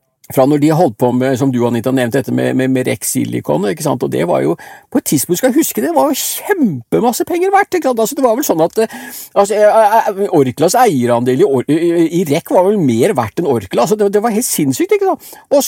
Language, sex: English, male